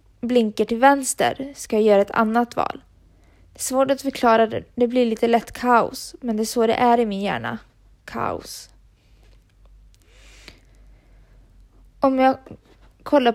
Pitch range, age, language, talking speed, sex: 205-240 Hz, 20-39, Swedish, 145 wpm, female